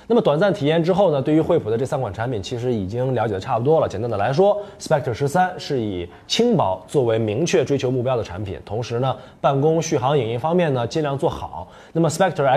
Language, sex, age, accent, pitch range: Chinese, male, 20-39, native, 105-150 Hz